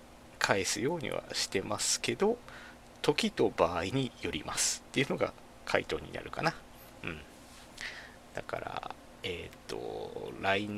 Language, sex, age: Japanese, male, 40-59